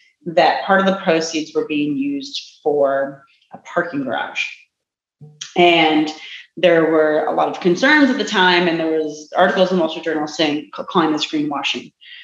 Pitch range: 160-210 Hz